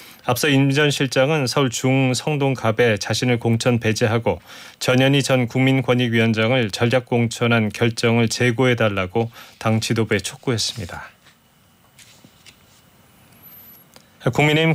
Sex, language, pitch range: male, Korean, 115-130 Hz